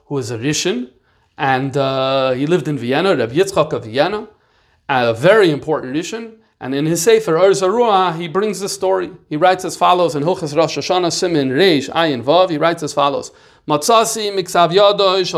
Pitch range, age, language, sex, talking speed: 145-190 Hz, 40-59, English, male, 175 wpm